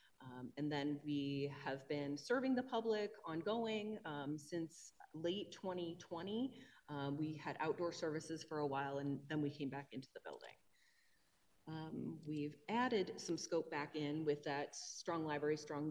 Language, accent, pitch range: English, American, 145-195 Hz